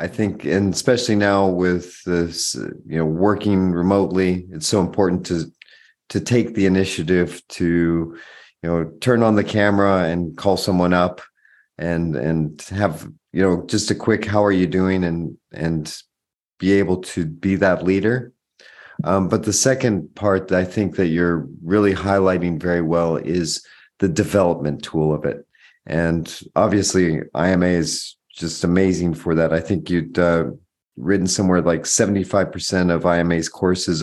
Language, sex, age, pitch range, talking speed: English, male, 40-59, 85-100 Hz, 155 wpm